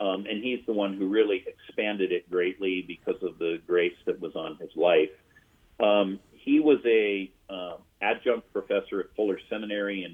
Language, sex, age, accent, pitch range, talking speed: English, male, 40-59, American, 95-115 Hz, 170 wpm